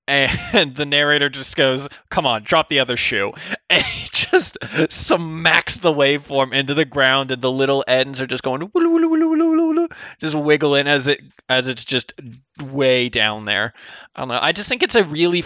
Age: 20-39